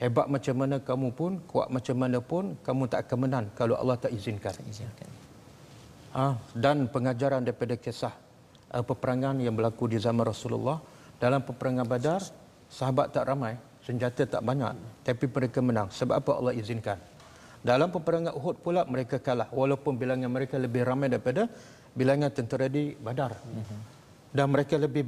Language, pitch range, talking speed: Malayalam, 120-145 Hz, 155 wpm